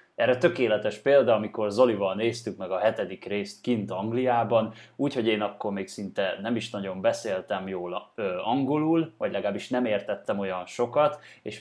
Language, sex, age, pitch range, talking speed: Hungarian, male, 20-39, 100-125 Hz, 160 wpm